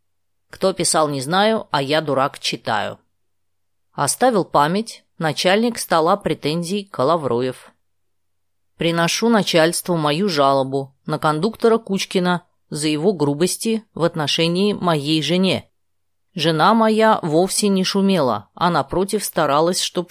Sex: female